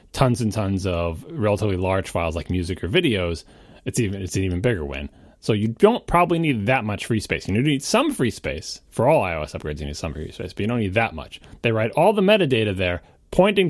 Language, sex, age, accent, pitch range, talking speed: English, male, 30-49, American, 95-140 Hz, 235 wpm